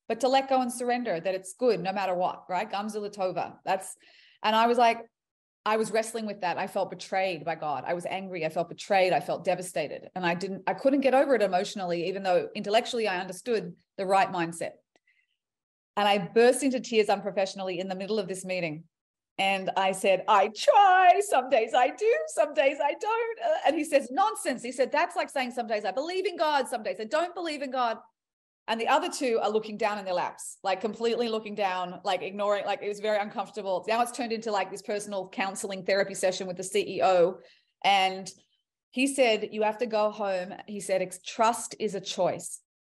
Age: 30-49